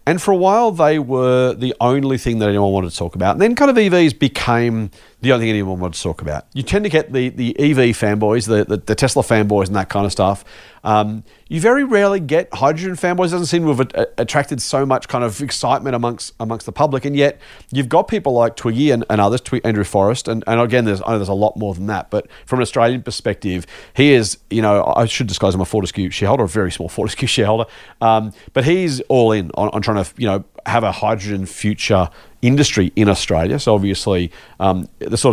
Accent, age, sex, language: Australian, 40-59, male, English